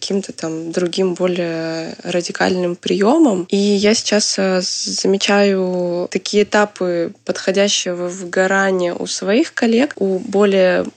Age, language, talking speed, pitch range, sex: 20-39, Russian, 110 wpm, 180-205 Hz, female